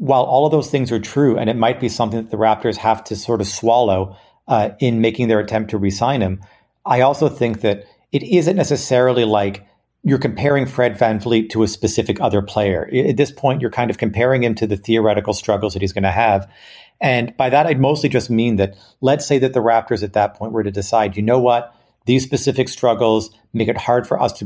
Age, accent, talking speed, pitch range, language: 40-59, American, 235 wpm, 105-125 Hz, English